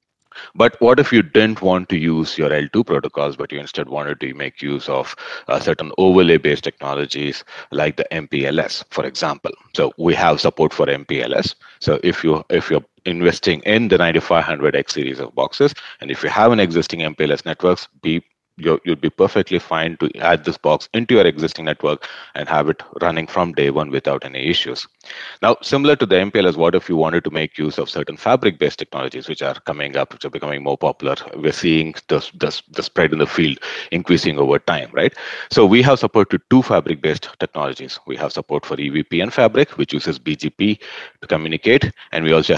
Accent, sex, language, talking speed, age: Indian, male, English, 195 wpm, 30-49